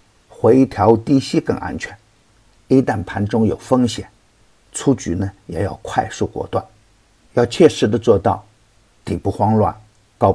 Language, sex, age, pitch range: Chinese, male, 50-69, 100-115 Hz